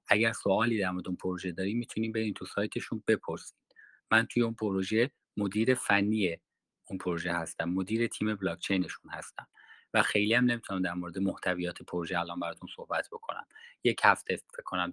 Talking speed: 160 wpm